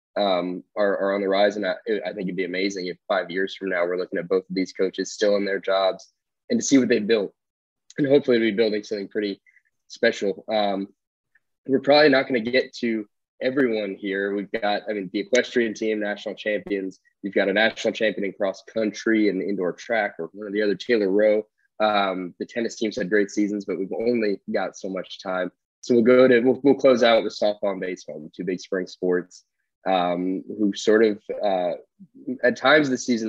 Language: English